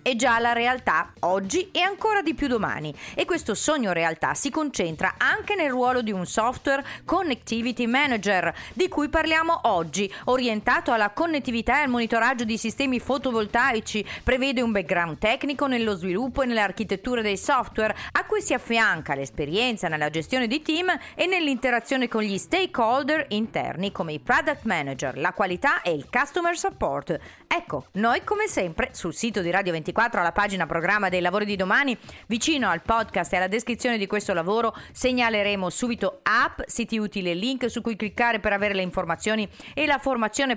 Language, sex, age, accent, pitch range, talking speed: Italian, female, 40-59, native, 200-265 Hz, 170 wpm